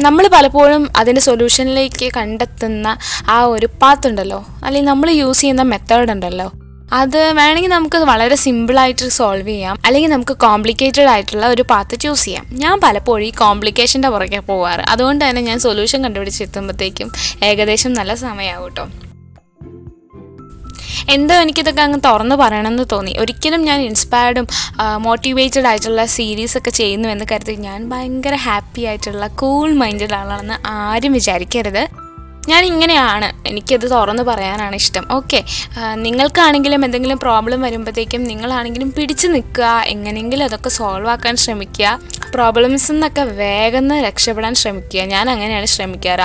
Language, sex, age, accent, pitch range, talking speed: Malayalam, female, 20-39, native, 210-270 Hz, 120 wpm